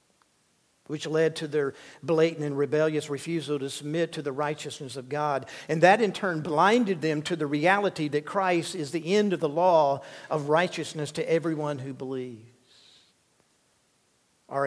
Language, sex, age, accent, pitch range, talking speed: English, male, 50-69, American, 150-180 Hz, 160 wpm